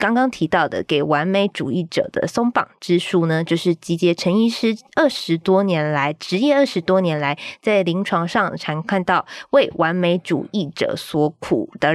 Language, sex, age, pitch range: Chinese, female, 20-39, 165-220 Hz